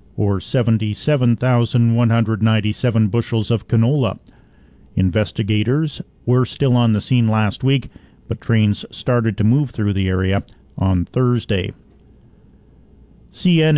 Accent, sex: American, male